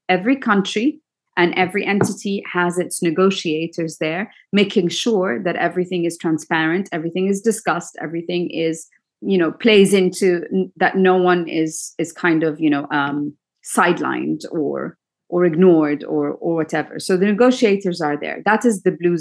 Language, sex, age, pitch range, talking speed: English, female, 30-49, 175-215 Hz, 160 wpm